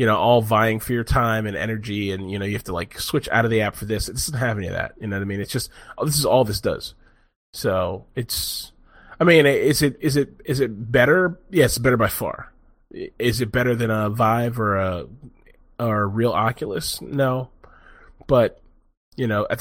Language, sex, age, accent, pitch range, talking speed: English, male, 20-39, American, 110-140 Hz, 230 wpm